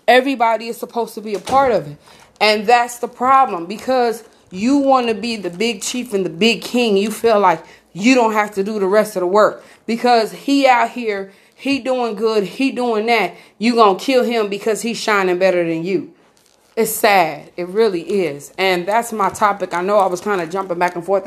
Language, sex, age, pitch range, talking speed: English, female, 30-49, 185-230 Hz, 220 wpm